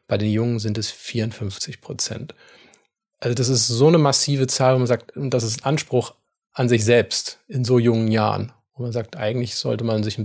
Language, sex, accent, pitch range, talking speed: German, male, German, 110-125 Hz, 205 wpm